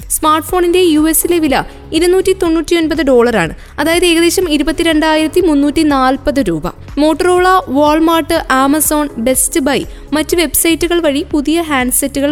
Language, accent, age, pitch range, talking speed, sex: Malayalam, native, 20-39, 290-345 Hz, 130 wpm, female